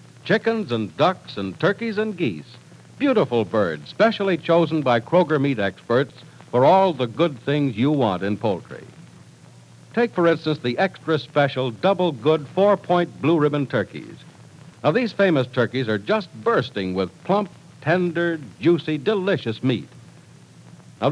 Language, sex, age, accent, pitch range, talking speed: English, male, 60-79, American, 115-175 Hz, 135 wpm